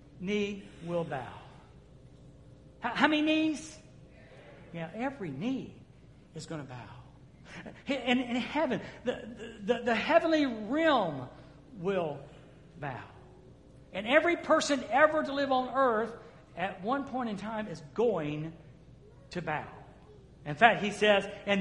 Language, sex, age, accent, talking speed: English, male, 60-79, American, 125 wpm